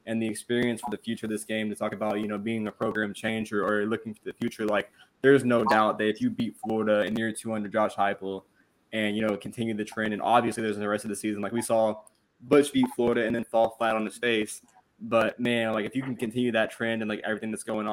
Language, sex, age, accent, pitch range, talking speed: English, male, 20-39, American, 105-115 Hz, 260 wpm